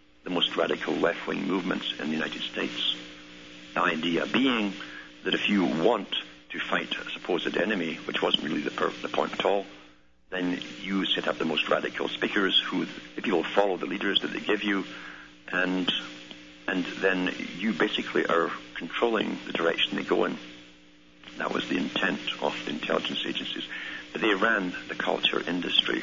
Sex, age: male, 60-79